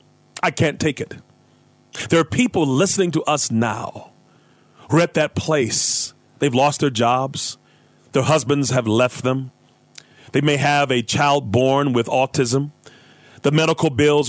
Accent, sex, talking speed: American, male, 150 wpm